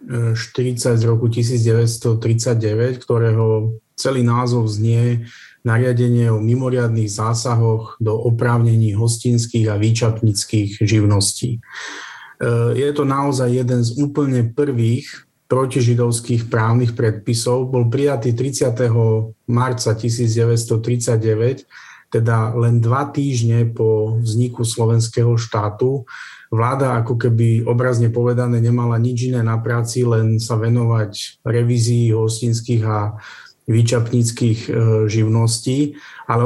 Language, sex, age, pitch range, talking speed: Slovak, male, 30-49, 115-125 Hz, 100 wpm